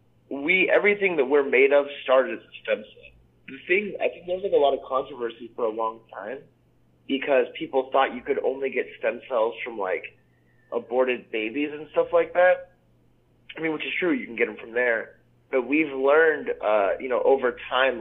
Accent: American